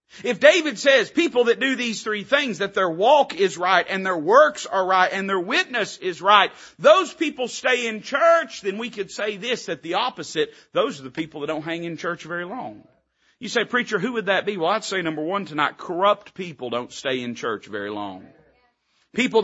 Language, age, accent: English, 40-59, American